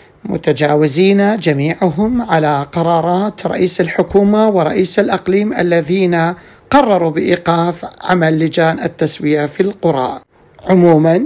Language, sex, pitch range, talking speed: Arabic, male, 155-185 Hz, 90 wpm